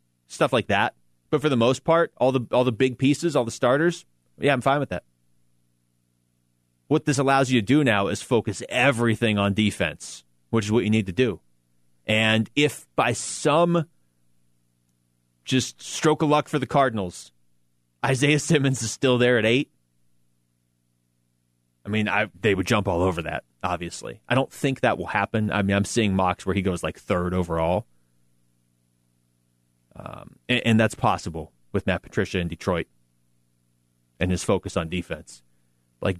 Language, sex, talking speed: English, male, 170 wpm